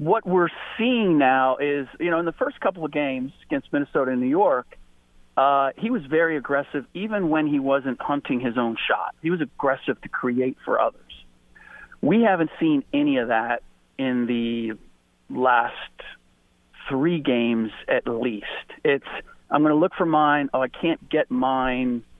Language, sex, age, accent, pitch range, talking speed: English, male, 40-59, American, 125-175 Hz, 170 wpm